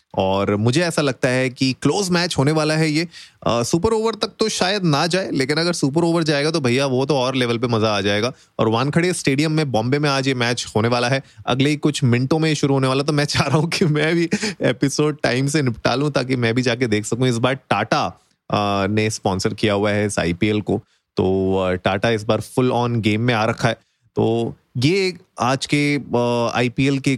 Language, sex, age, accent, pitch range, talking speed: Hindi, male, 30-49, native, 115-150 Hz, 225 wpm